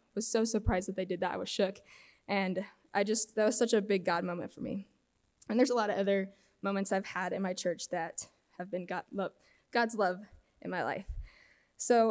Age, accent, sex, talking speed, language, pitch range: 10-29, American, female, 215 wpm, English, 190-220 Hz